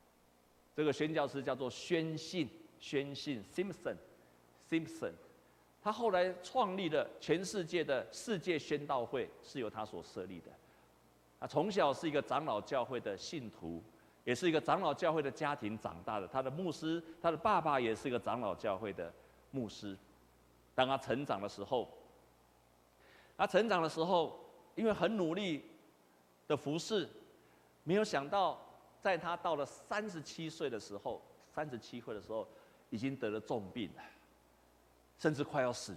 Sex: male